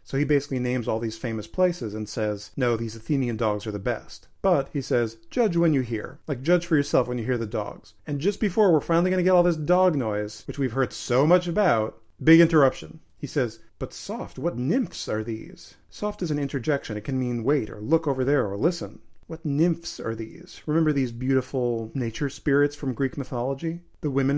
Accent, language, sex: American, English, male